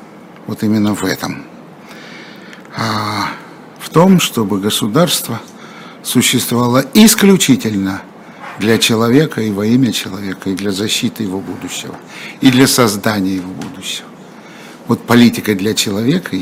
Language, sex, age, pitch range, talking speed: Russian, male, 60-79, 105-130 Hz, 110 wpm